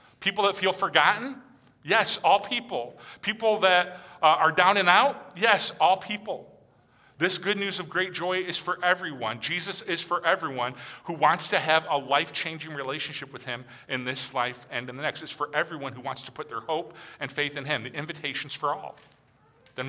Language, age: English, 40-59